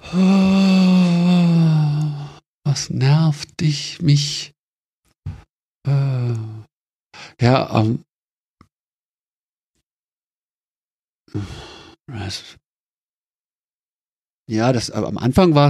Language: German